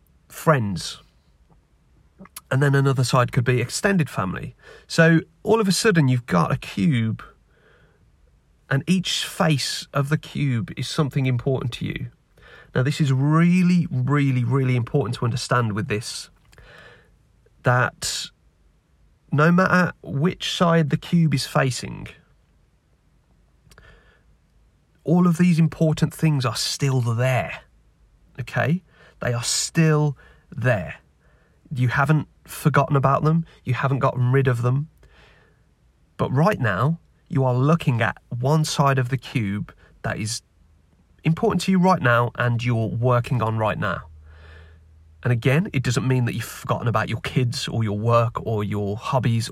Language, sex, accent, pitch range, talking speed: English, male, British, 120-155 Hz, 140 wpm